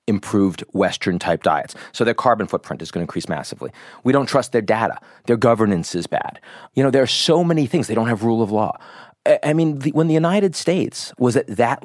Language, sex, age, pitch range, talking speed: English, male, 40-59, 105-130 Hz, 220 wpm